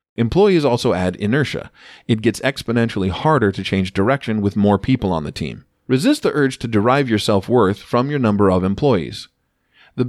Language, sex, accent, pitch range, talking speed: English, male, American, 95-130 Hz, 180 wpm